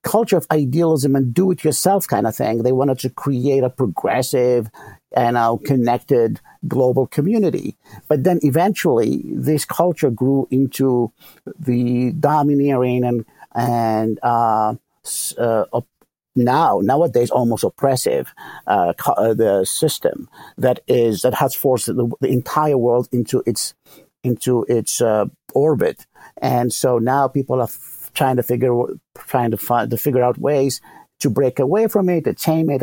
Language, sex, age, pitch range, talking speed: English, male, 50-69, 125-165 Hz, 140 wpm